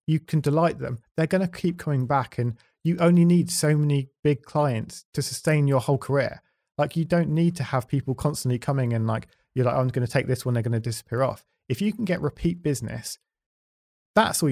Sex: male